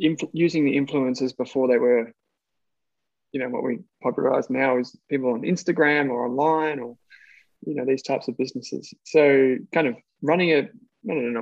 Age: 20-39